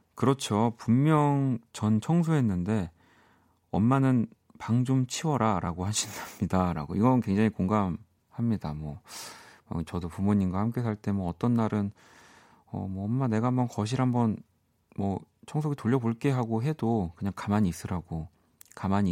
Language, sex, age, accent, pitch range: Korean, male, 40-59, native, 90-120 Hz